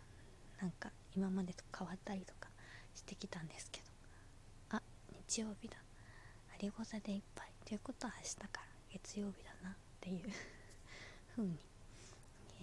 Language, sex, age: Japanese, female, 20-39